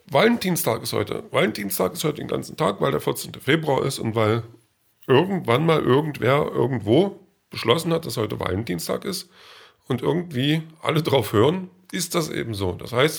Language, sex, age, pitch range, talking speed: German, male, 40-59, 110-140 Hz, 170 wpm